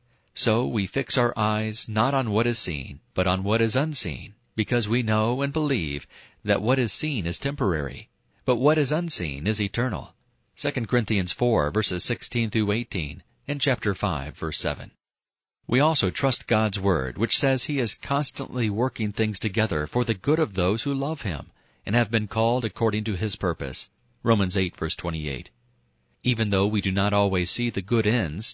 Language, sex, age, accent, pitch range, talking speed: English, male, 40-59, American, 90-125 Hz, 180 wpm